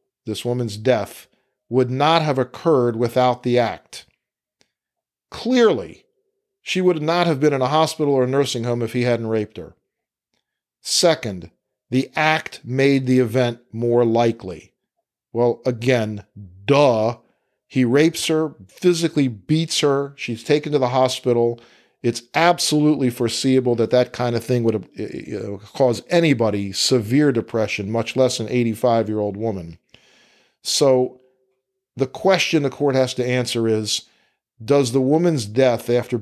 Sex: male